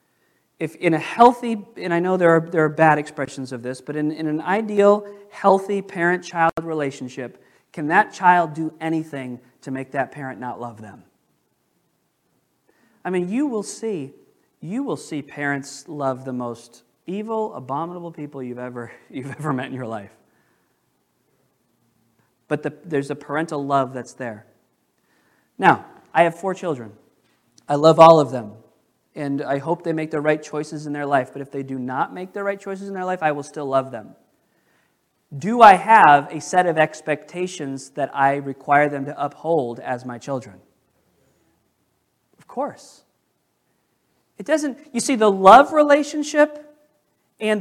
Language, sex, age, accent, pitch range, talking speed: English, male, 40-59, American, 135-195 Hz, 165 wpm